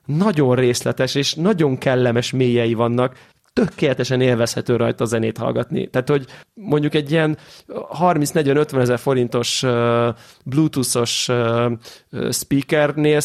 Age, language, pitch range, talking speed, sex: 30-49, Hungarian, 120-150 Hz, 110 wpm, male